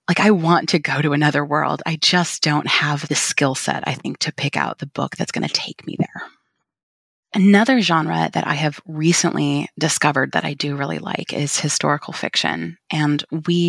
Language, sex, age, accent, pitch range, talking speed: English, female, 20-39, American, 140-190 Hz, 195 wpm